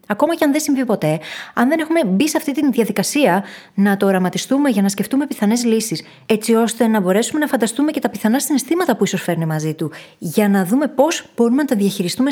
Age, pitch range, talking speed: 20-39, 175-245 Hz, 220 wpm